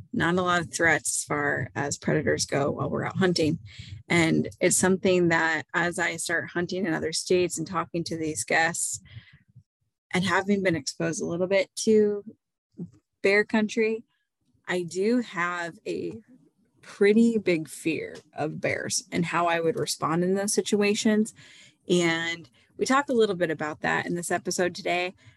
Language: English